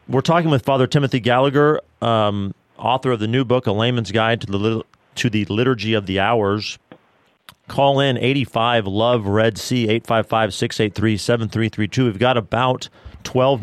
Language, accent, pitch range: English, American, 100-125 Hz